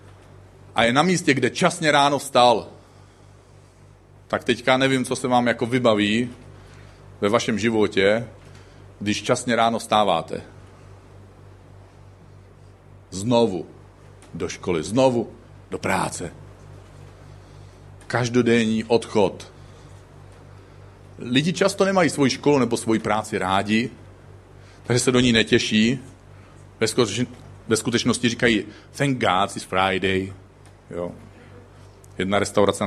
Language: Czech